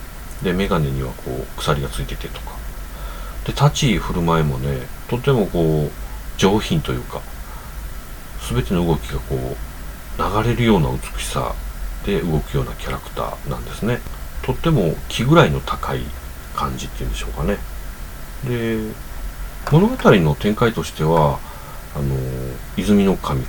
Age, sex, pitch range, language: 40-59, male, 70-115 Hz, Japanese